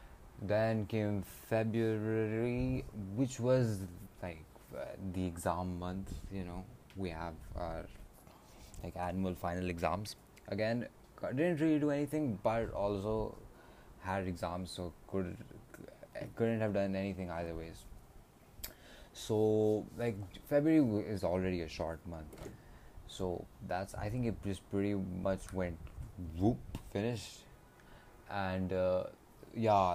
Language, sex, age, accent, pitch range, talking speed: English, male, 20-39, Indian, 90-110 Hz, 115 wpm